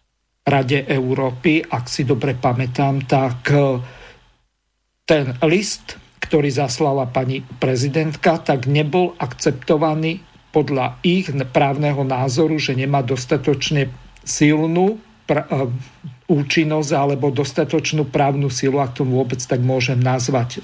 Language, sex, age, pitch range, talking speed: Slovak, male, 50-69, 130-155 Hz, 100 wpm